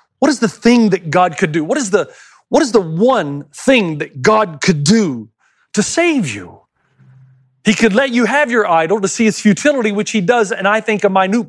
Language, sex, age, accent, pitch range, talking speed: English, male, 40-59, American, 145-215 Hz, 220 wpm